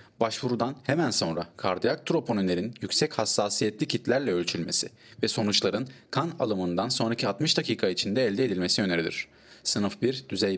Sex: male